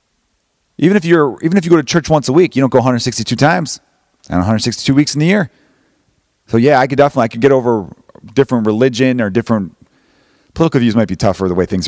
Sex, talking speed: male, 220 wpm